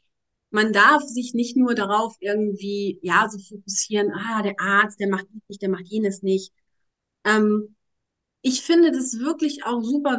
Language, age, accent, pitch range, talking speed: German, 40-59, German, 210-270 Hz, 160 wpm